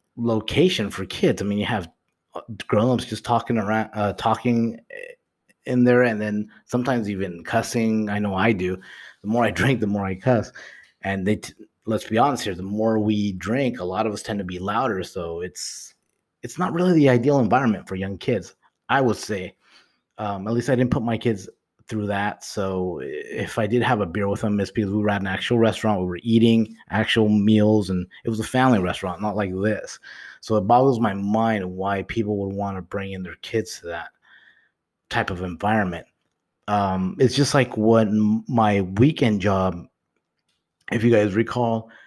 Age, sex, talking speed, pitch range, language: 30-49, male, 195 wpm, 100-115 Hz, English